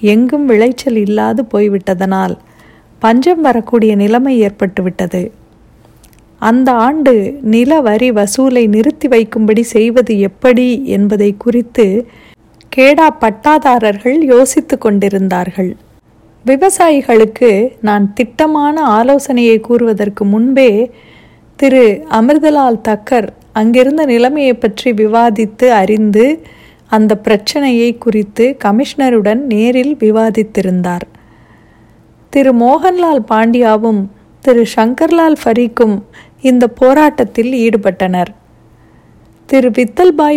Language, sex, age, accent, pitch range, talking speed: Tamil, female, 50-69, native, 210-260 Hz, 80 wpm